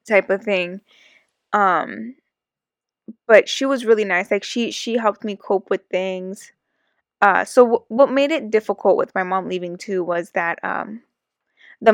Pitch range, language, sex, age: 185-210 Hz, English, female, 10-29